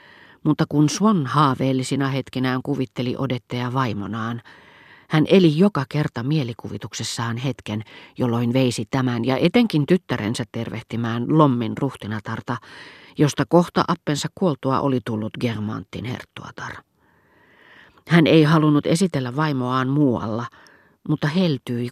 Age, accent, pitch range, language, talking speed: 40-59, native, 120-150 Hz, Finnish, 105 wpm